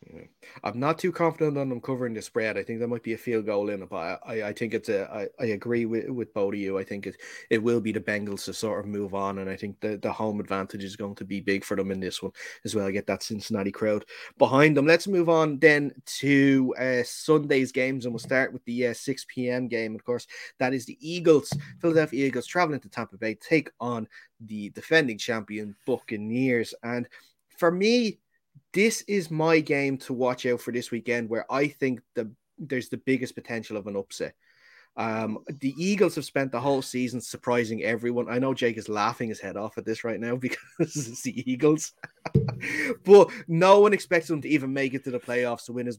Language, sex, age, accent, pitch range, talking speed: English, male, 30-49, Irish, 110-140 Hz, 225 wpm